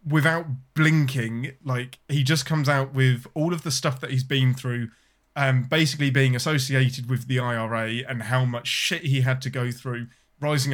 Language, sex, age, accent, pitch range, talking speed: English, male, 20-39, British, 125-150 Hz, 185 wpm